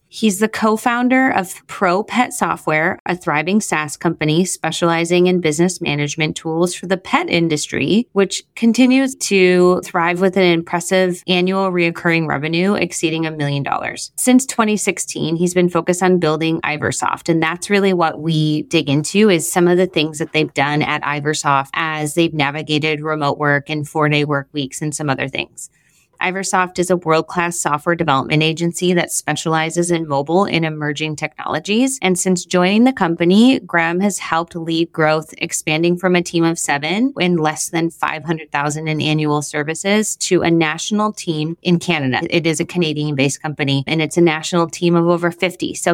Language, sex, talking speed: English, female, 170 wpm